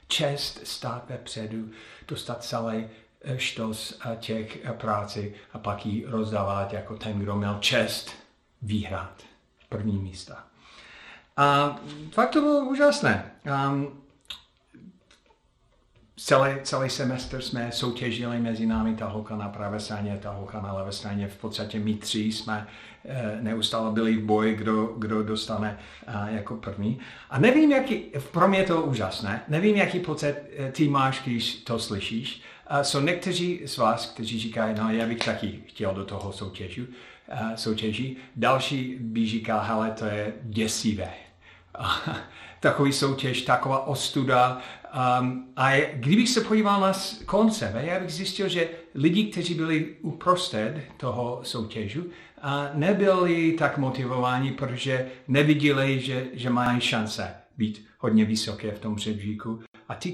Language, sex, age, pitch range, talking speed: Czech, male, 50-69, 110-140 Hz, 130 wpm